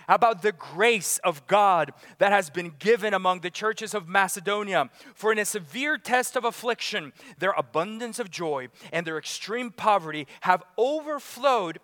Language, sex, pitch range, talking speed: English, male, 165-225 Hz, 160 wpm